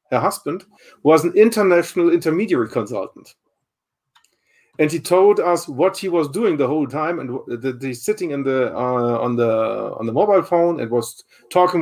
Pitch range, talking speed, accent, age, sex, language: 130-180 Hz, 170 wpm, German, 40-59, male, English